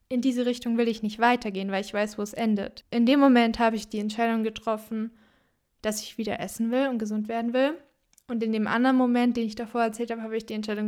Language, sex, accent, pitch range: German, female, German, 220-245 Hz